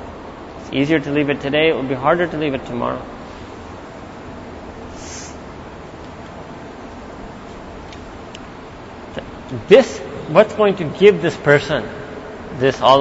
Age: 30-49